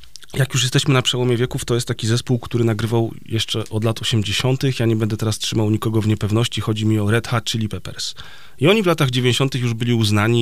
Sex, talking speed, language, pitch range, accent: male, 225 wpm, Polish, 110-130 Hz, native